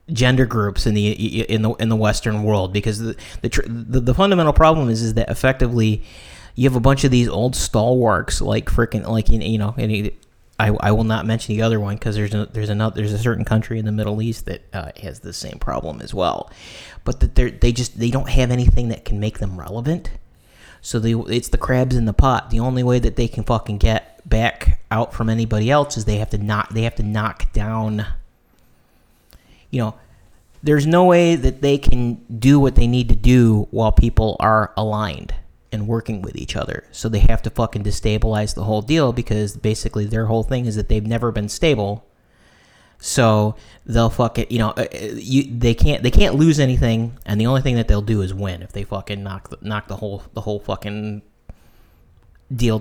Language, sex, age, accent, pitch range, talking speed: English, male, 30-49, American, 105-120 Hz, 210 wpm